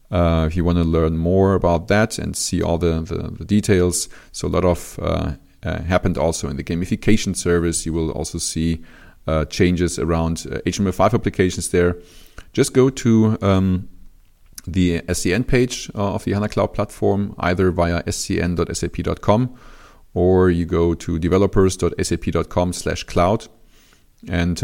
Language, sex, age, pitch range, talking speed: English, male, 40-59, 85-100 Hz, 150 wpm